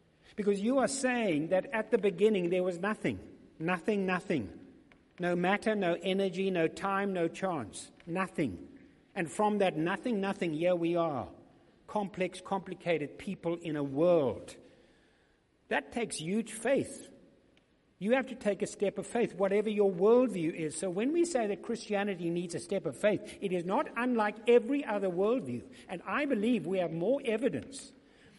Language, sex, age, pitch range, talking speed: English, male, 60-79, 150-205 Hz, 165 wpm